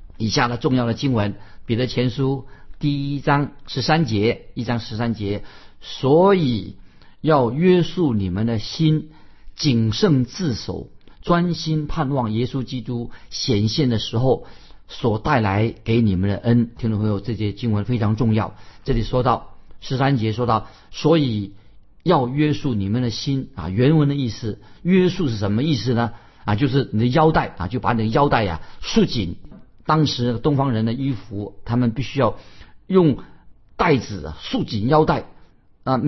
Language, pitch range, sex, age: Chinese, 110-145 Hz, male, 50-69